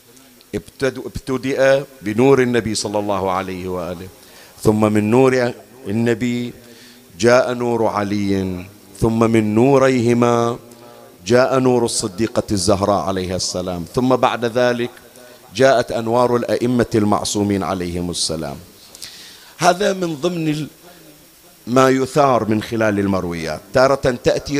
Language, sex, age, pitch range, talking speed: Arabic, male, 50-69, 110-145 Hz, 100 wpm